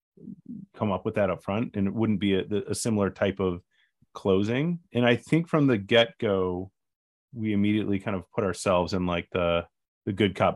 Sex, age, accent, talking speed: male, 30-49, American, 200 wpm